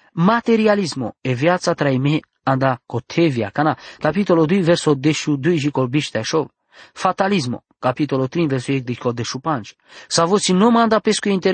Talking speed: 140 wpm